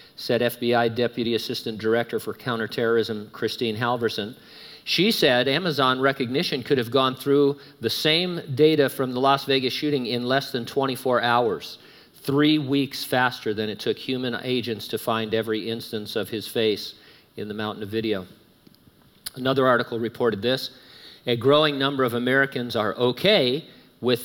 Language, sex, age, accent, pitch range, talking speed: English, male, 50-69, American, 115-140 Hz, 155 wpm